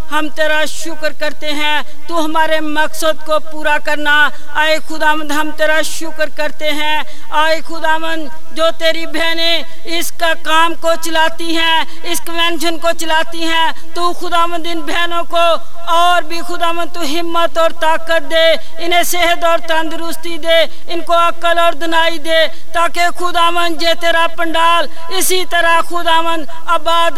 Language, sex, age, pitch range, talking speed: Hindi, female, 50-69, 295-330 Hz, 150 wpm